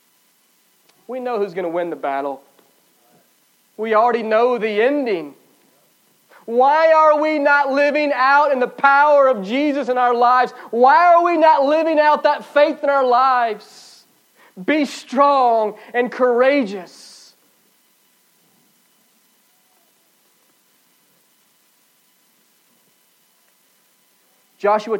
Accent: American